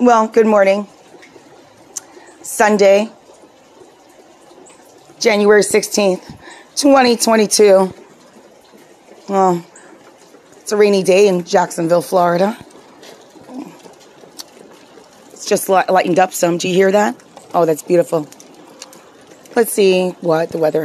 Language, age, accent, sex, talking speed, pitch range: English, 30-49, American, female, 95 wpm, 175-220 Hz